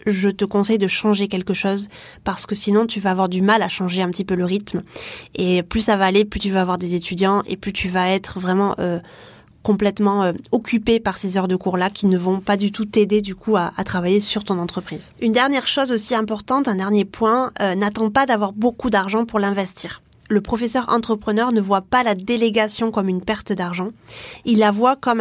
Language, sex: French, female